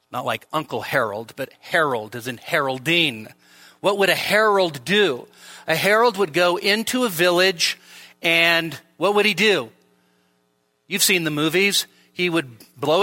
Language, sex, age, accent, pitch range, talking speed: English, male, 40-59, American, 145-210 Hz, 150 wpm